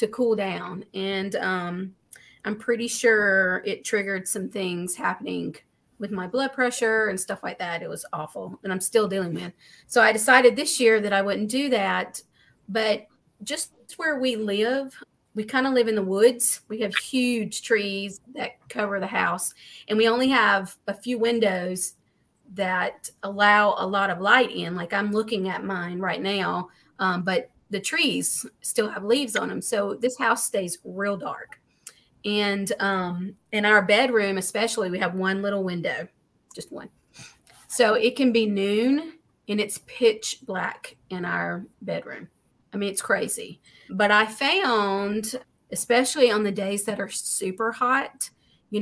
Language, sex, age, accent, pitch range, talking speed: English, female, 30-49, American, 195-230 Hz, 165 wpm